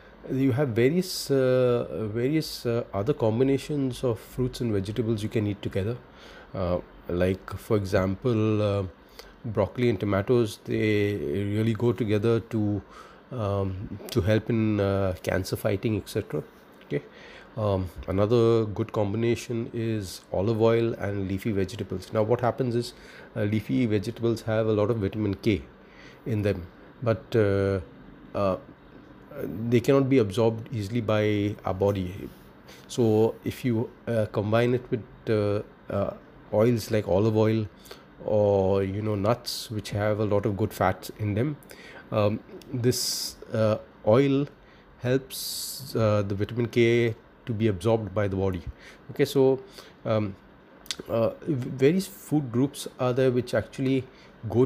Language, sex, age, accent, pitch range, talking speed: English, male, 30-49, Indian, 105-120 Hz, 140 wpm